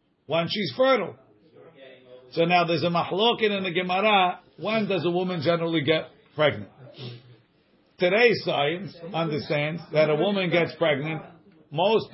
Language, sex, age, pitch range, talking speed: English, male, 50-69, 150-200 Hz, 135 wpm